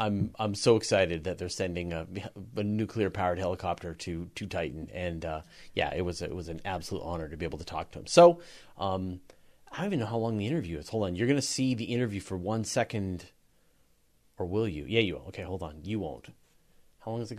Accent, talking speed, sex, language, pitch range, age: American, 235 wpm, male, English, 95-150 Hz, 30-49